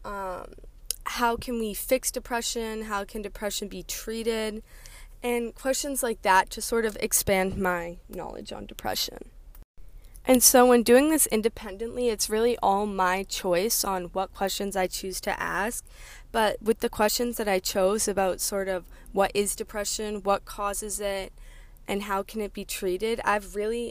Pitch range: 190-220 Hz